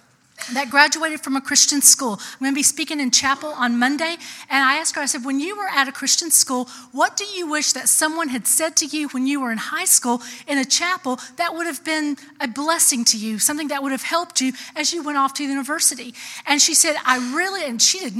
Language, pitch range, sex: English, 245-310 Hz, female